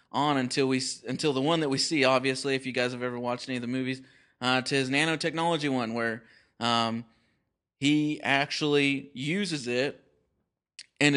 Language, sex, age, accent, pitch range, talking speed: English, male, 30-49, American, 125-150 Hz, 170 wpm